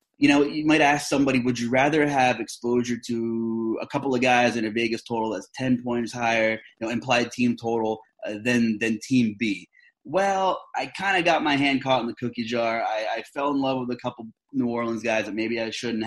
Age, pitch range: 20-39, 115-150 Hz